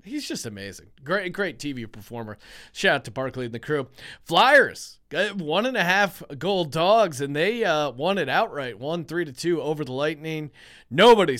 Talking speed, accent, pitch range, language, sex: 185 wpm, American, 130-175 Hz, English, male